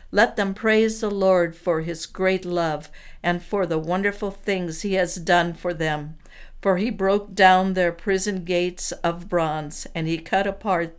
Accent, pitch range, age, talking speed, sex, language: American, 165-195 Hz, 60-79, 175 wpm, female, English